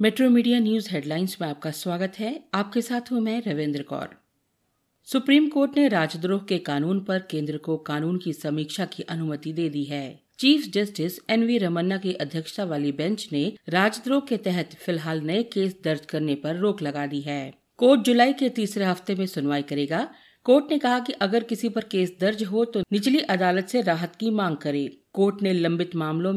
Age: 50-69